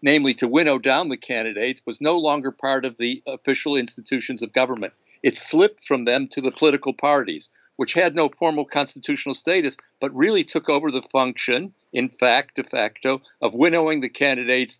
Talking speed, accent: 180 wpm, American